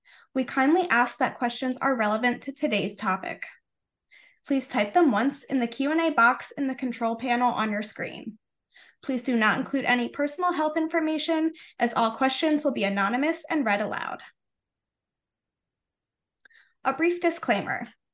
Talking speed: 150 wpm